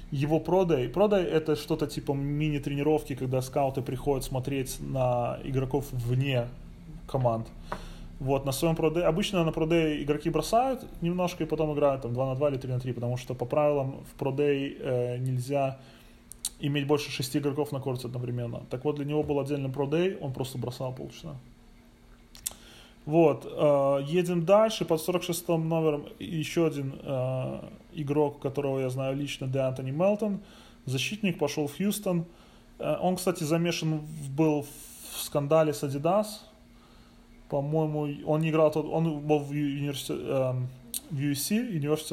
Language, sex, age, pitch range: Russian, male, 20-39, 135-160 Hz